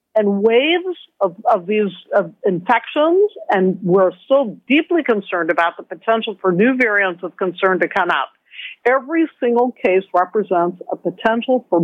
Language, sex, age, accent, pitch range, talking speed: English, female, 50-69, American, 185-245 Hz, 145 wpm